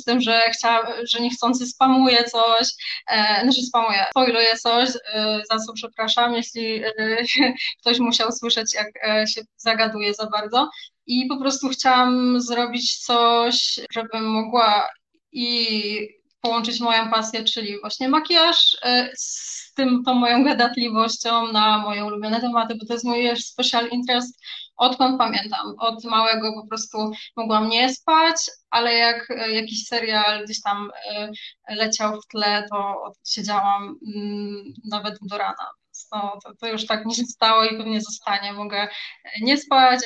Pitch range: 215-245 Hz